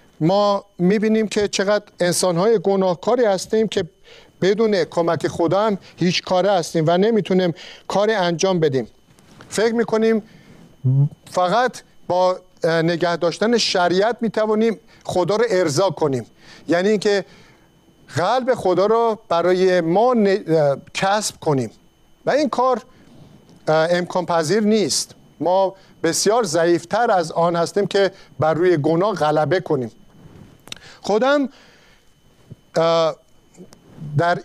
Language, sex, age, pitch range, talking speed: Persian, male, 50-69, 165-215 Hz, 110 wpm